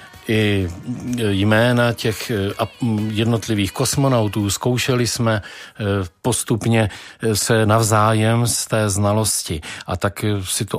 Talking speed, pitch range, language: 95 wpm, 105-120 Hz, Czech